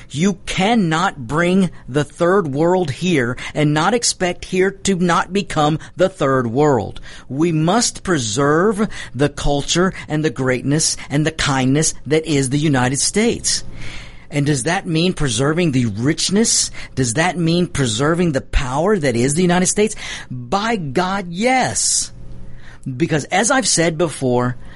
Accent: American